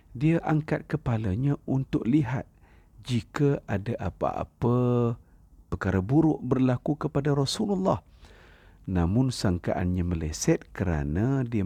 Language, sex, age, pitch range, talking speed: Malay, male, 50-69, 90-130 Hz, 95 wpm